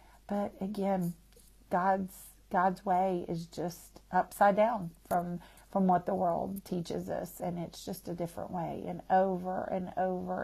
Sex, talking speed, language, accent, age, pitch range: female, 150 wpm, English, American, 40-59, 170-195 Hz